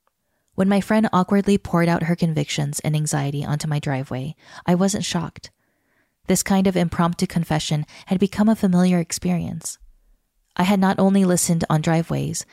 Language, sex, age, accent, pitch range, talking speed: English, female, 20-39, American, 155-185 Hz, 160 wpm